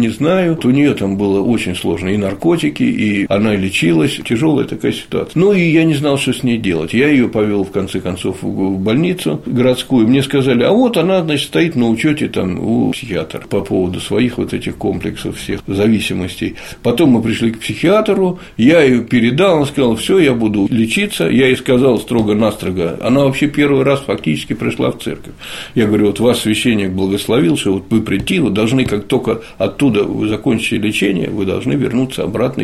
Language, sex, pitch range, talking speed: Russian, male, 105-145 Hz, 190 wpm